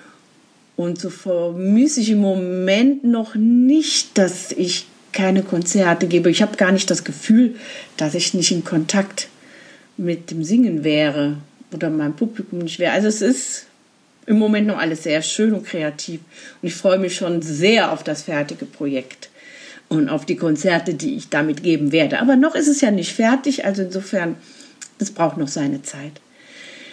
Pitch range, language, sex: 175-255 Hz, German, female